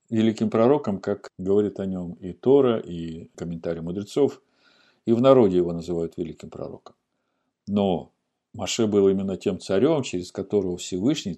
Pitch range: 95-120 Hz